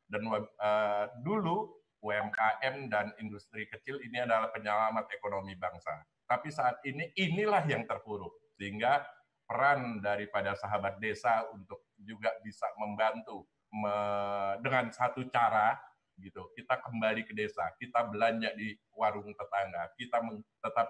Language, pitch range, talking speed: Indonesian, 105-125 Hz, 125 wpm